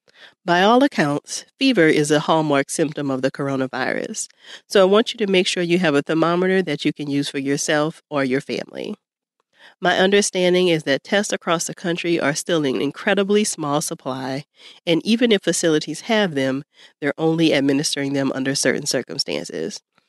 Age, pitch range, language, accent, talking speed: 40-59, 140-185 Hz, English, American, 175 wpm